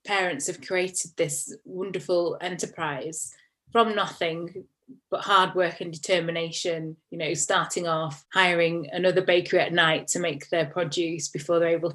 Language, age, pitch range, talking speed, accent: English, 20-39, 165-185 Hz, 145 wpm, British